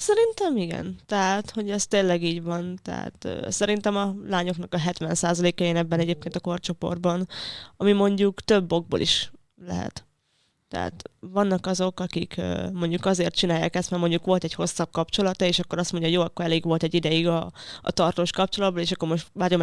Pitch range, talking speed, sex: 170-195 Hz, 180 wpm, female